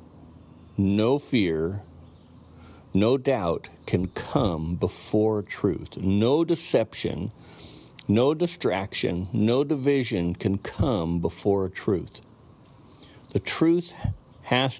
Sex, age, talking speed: male, 50-69, 85 wpm